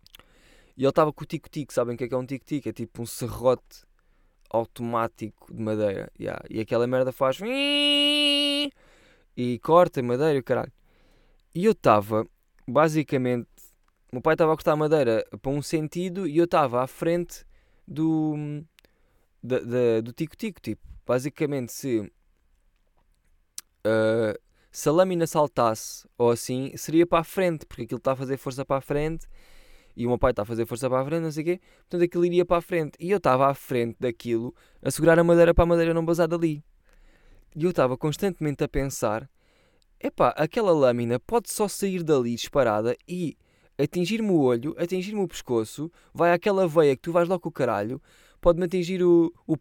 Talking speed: 180 wpm